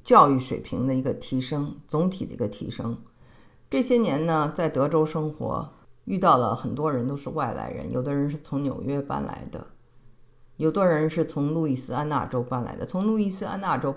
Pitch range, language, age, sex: 130-155 Hz, Chinese, 50-69, female